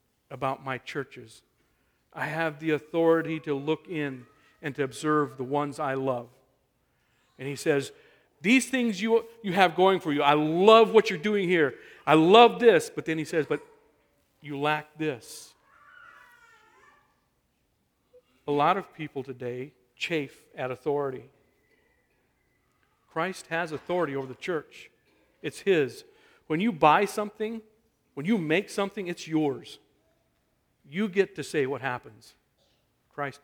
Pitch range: 130-165 Hz